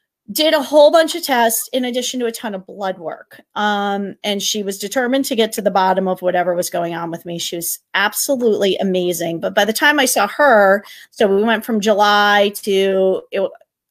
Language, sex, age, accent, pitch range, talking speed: English, female, 30-49, American, 190-230 Hz, 210 wpm